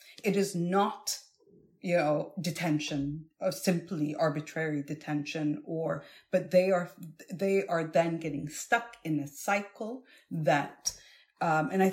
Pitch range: 145-175 Hz